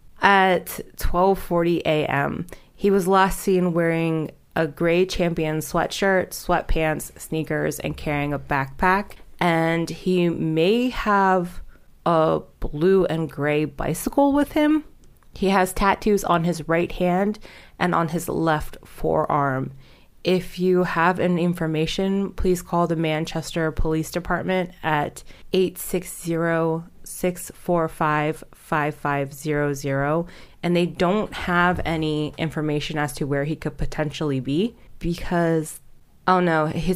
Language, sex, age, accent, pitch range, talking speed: English, female, 20-39, American, 155-180 Hz, 130 wpm